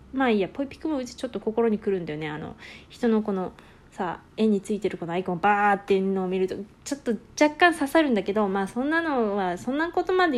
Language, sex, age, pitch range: Japanese, female, 20-39, 190-240 Hz